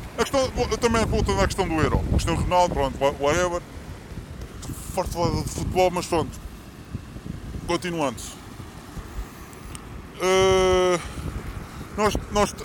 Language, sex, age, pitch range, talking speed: Portuguese, female, 20-39, 155-190 Hz, 90 wpm